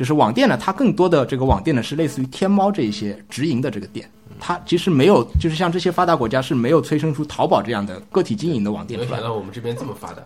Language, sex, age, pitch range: Chinese, male, 20-39, 105-140 Hz